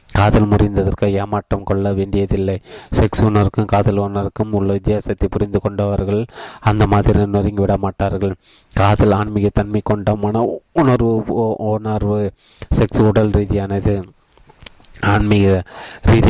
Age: 30-49